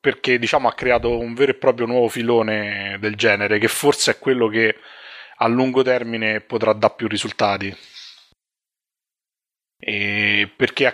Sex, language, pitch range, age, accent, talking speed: male, Italian, 110-130 Hz, 30-49, native, 150 wpm